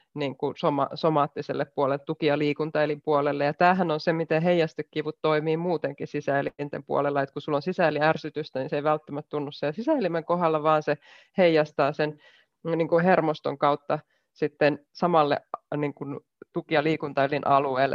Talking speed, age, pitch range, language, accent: 150 wpm, 20-39, 145-170 Hz, Finnish, native